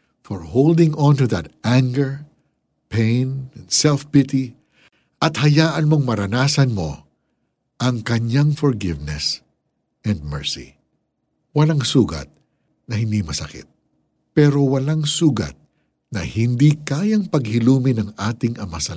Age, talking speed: 60-79, 110 wpm